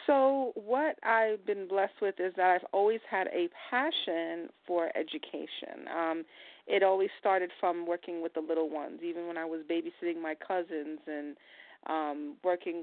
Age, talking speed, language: 40-59, 165 wpm, English